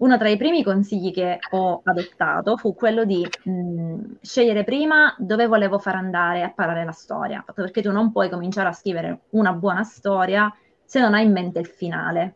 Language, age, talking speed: Italian, 20-39, 185 wpm